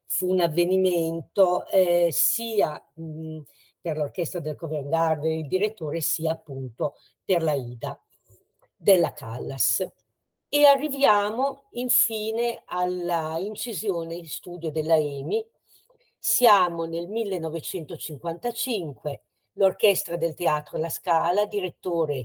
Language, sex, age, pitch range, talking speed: Italian, female, 50-69, 160-205 Hz, 100 wpm